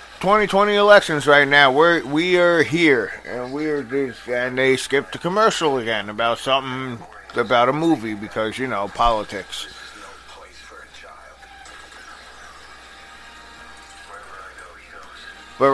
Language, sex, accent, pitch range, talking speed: English, male, American, 115-145 Hz, 105 wpm